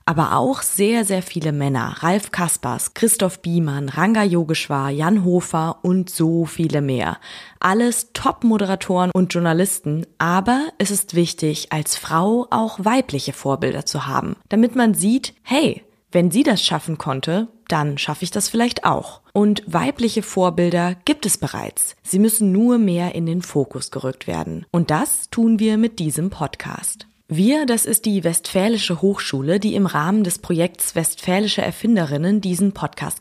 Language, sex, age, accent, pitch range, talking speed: German, female, 20-39, German, 165-215 Hz, 155 wpm